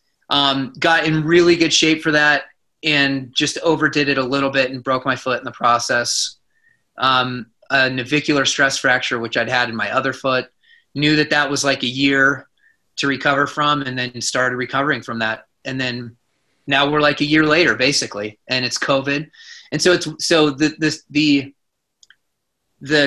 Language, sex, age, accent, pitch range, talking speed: English, male, 30-49, American, 130-160 Hz, 180 wpm